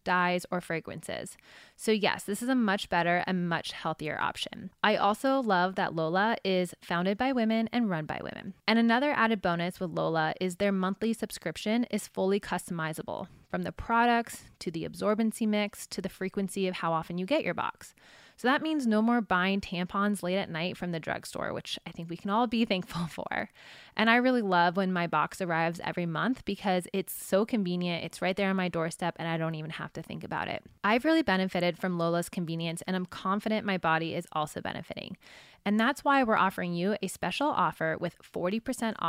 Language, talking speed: English, 205 wpm